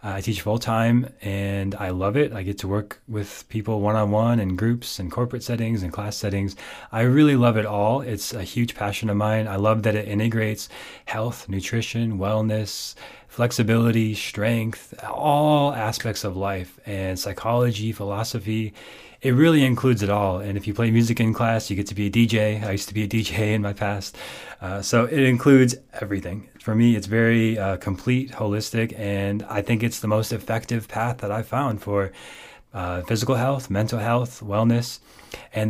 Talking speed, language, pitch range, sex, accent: 180 wpm, English, 100-115 Hz, male, American